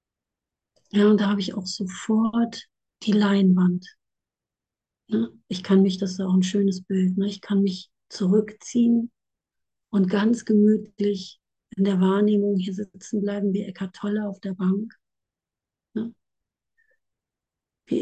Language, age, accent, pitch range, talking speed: German, 50-69, German, 185-215 Hz, 125 wpm